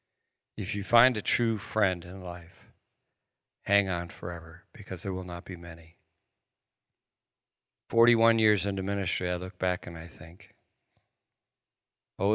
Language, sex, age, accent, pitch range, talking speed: English, male, 50-69, American, 90-110 Hz, 135 wpm